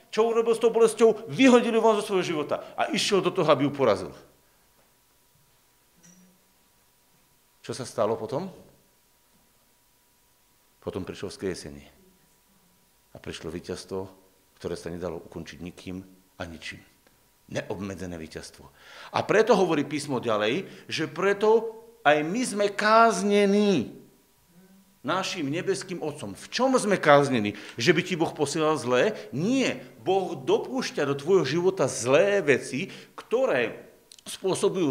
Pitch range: 135-215 Hz